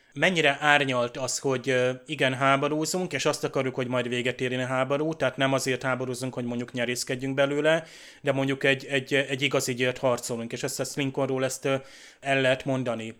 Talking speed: 175 wpm